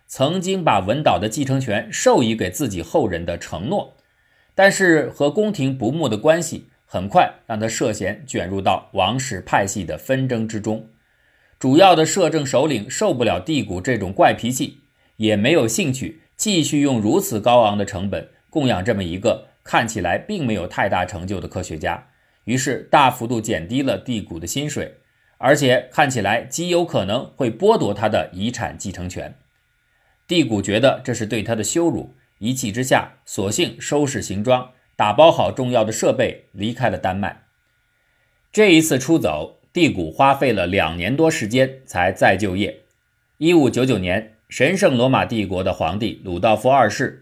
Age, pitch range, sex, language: 50-69, 100-140 Hz, male, Chinese